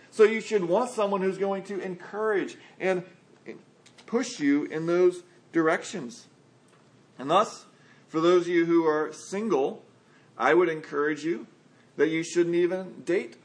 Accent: American